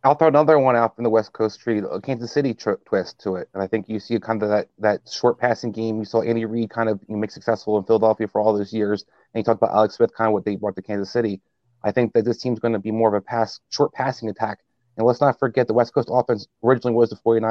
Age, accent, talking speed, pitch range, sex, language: 30-49, American, 290 wpm, 105-115 Hz, male, English